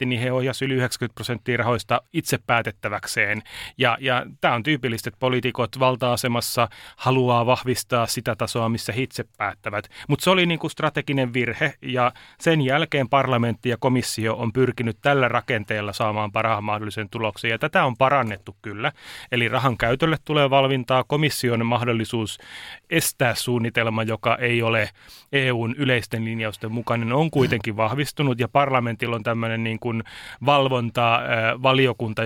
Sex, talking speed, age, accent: male, 145 wpm, 30-49, native